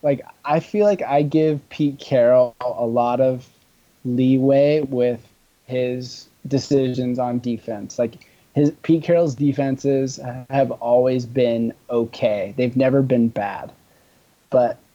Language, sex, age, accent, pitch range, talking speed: English, male, 20-39, American, 125-145 Hz, 125 wpm